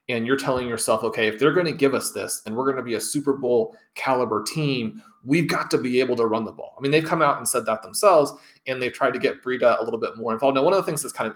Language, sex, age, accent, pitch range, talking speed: English, male, 30-49, American, 115-145 Hz, 310 wpm